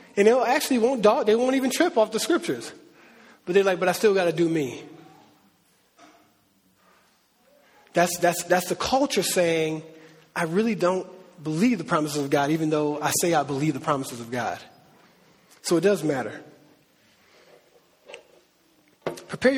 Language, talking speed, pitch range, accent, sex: English, 160 wpm, 160-200 Hz, American, male